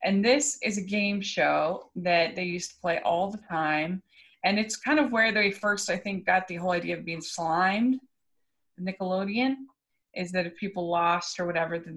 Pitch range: 160-185 Hz